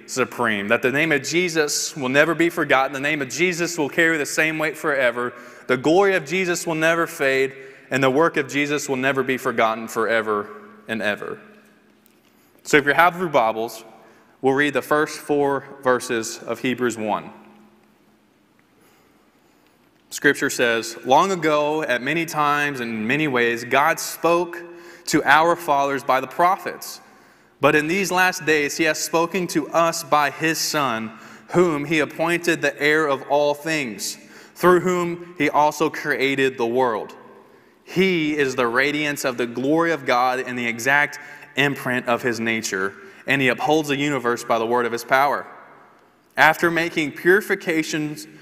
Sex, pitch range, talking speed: male, 125-160 Hz, 160 wpm